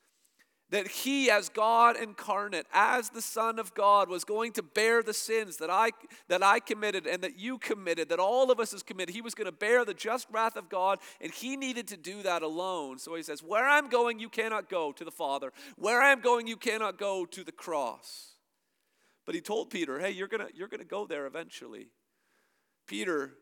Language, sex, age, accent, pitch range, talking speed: English, male, 40-59, American, 155-225 Hz, 210 wpm